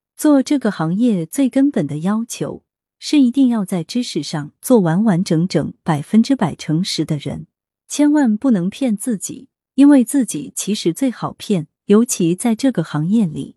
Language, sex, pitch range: Chinese, female, 165-250 Hz